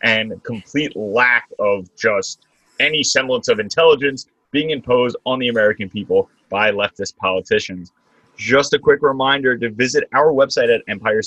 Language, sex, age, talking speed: English, male, 30-49, 150 wpm